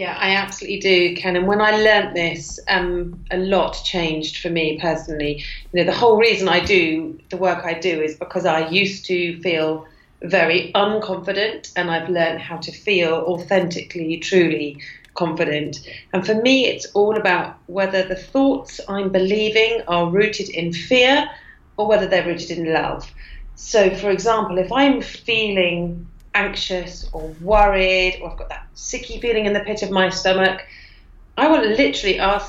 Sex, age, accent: female, 40-59, British